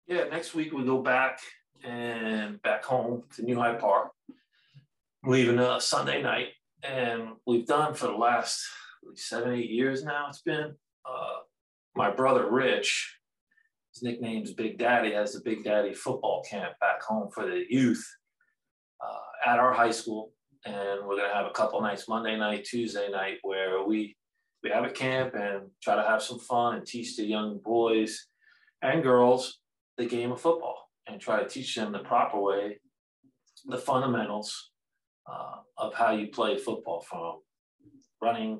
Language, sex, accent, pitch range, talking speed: English, male, American, 105-130 Hz, 165 wpm